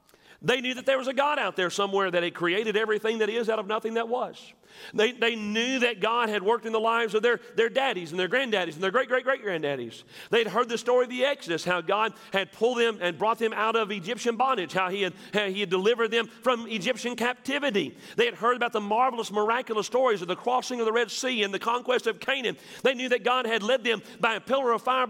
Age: 40-59